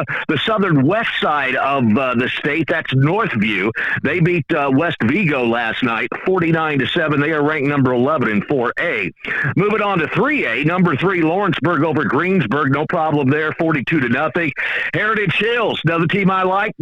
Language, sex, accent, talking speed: English, male, American, 170 wpm